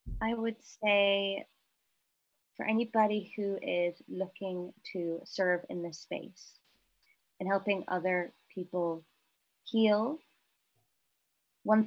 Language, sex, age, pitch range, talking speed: English, female, 20-39, 180-210 Hz, 95 wpm